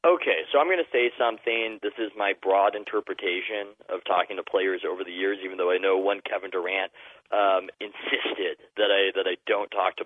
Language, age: English, 30-49